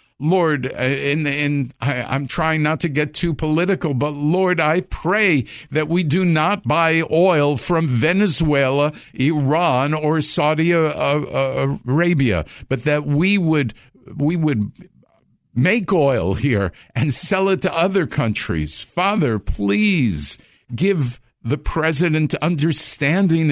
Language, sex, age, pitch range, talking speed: English, male, 50-69, 125-160 Hz, 120 wpm